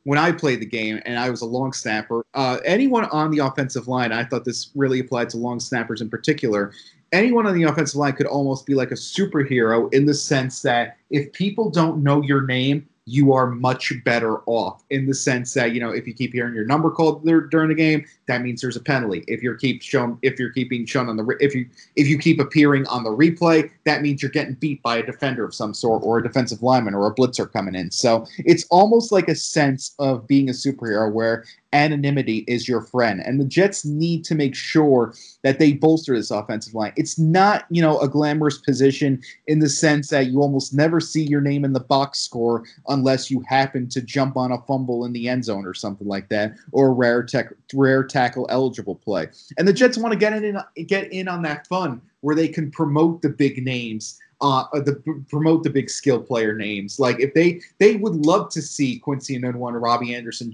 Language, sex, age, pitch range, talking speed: English, male, 30-49, 120-150 Hz, 225 wpm